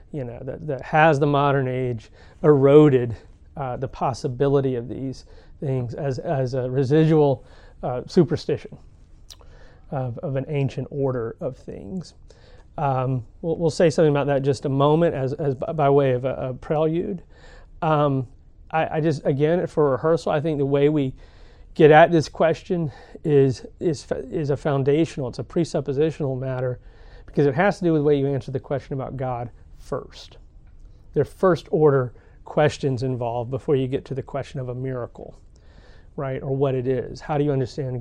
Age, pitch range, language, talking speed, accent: 30-49, 130-155 Hz, English, 175 wpm, American